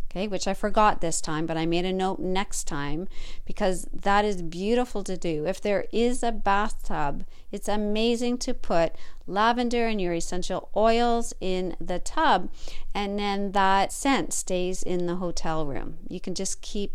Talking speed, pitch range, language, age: 175 wpm, 185-240 Hz, English, 40-59